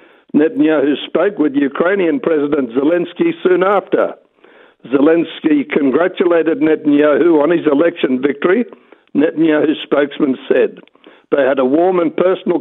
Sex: male